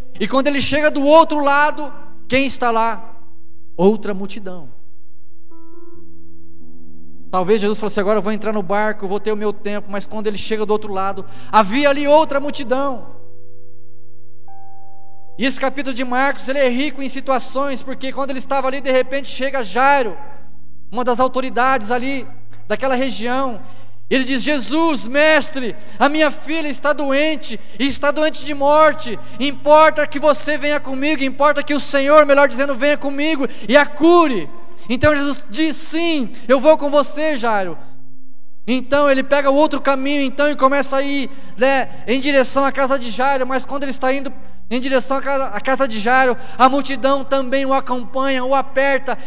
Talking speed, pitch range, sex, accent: 170 wpm, 215-285 Hz, male, Brazilian